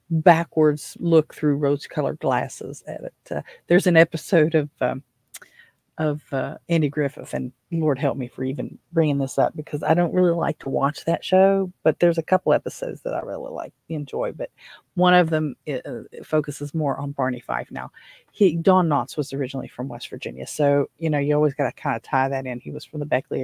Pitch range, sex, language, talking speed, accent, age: 135-165 Hz, female, English, 210 wpm, American, 40-59